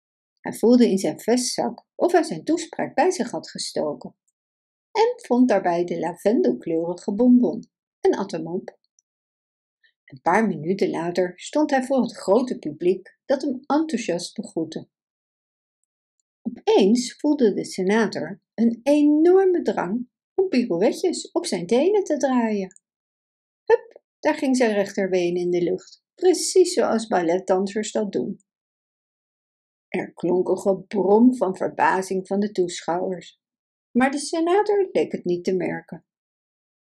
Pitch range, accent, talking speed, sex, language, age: 185-290 Hz, Dutch, 130 wpm, female, Dutch, 60-79